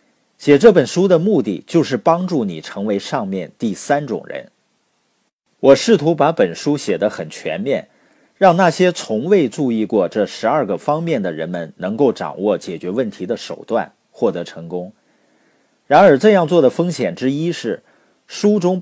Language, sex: Chinese, male